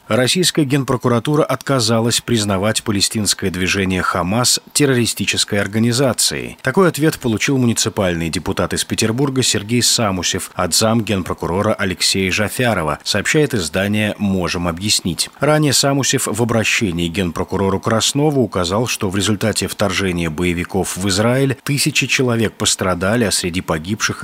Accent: native